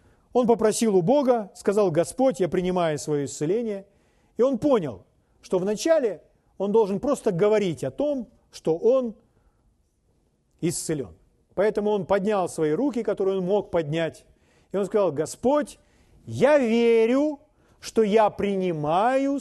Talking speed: 130 wpm